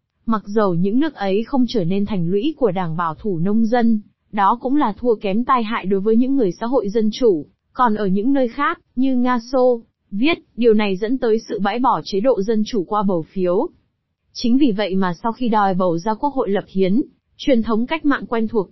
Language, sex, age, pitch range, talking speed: Vietnamese, female, 20-39, 195-250 Hz, 235 wpm